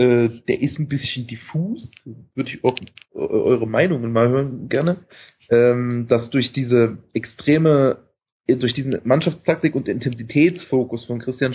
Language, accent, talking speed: German, German, 125 wpm